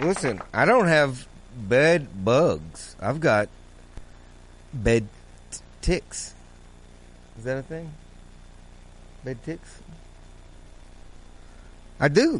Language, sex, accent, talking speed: English, male, American, 85 wpm